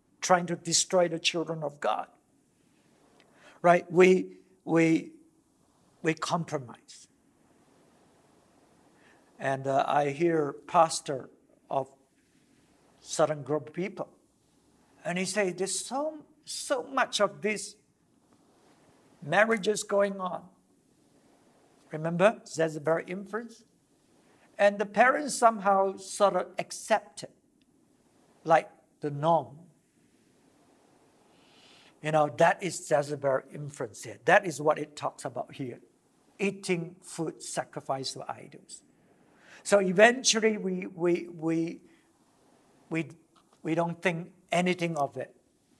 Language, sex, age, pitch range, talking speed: English, male, 60-79, 150-190 Hz, 105 wpm